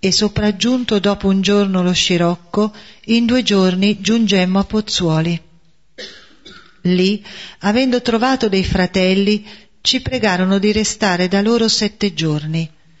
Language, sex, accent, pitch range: Italian, female, native, 175-215 Hz